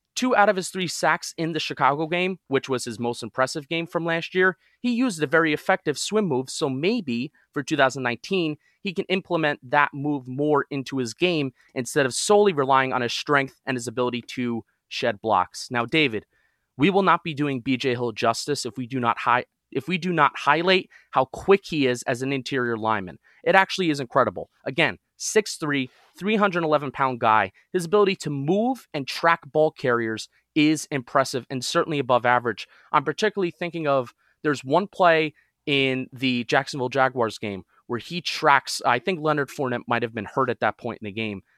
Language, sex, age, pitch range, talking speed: English, male, 30-49, 125-165 Hz, 190 wpm